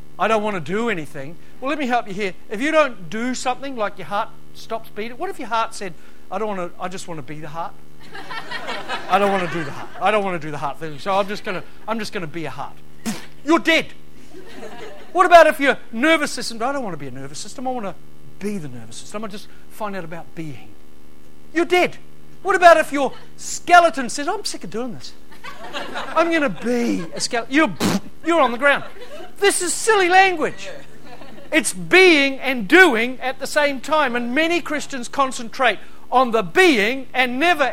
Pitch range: 185-280 Hz